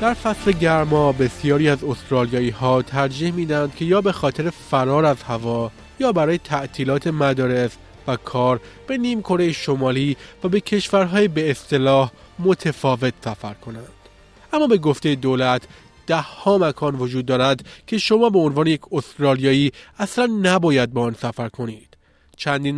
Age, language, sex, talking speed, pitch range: 30-49, Persian, male, 150 wpm, 130-175 Hz